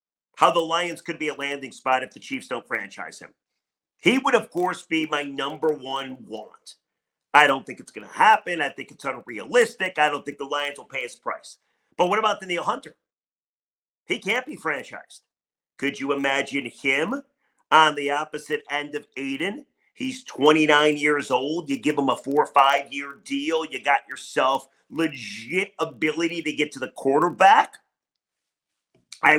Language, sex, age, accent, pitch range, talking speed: English, male, 40-59, American, 140-170 Hz, 175 wpm